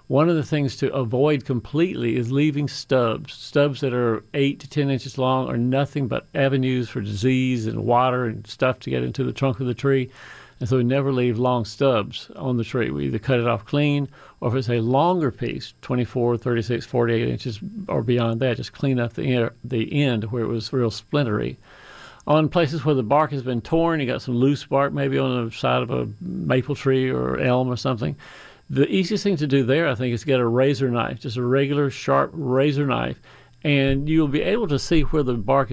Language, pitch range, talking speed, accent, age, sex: English, 120-140 Hz, 215 wpm, American, 50-69, male